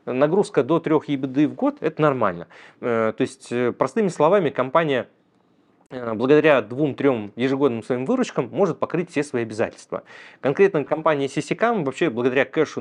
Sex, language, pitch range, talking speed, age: male, Russian, 125-160 Hz, 135 wpm, 20-39